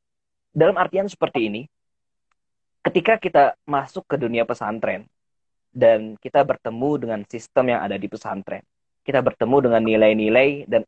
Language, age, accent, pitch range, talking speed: Indonesian, 20-39, native, 115-160 Hz, 130 wpm